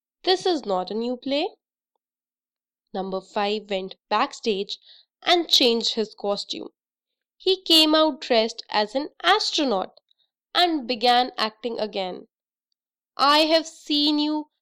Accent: Indian